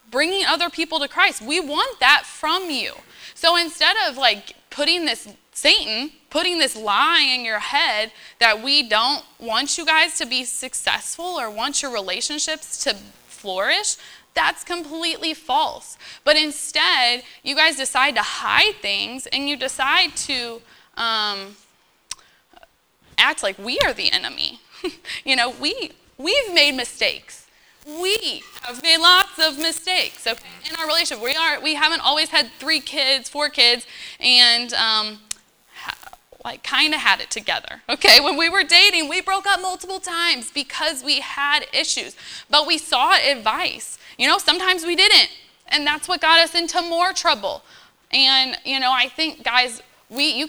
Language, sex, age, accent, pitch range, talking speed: English, female, 20-39, American, 255-335 Hz, 160 wpm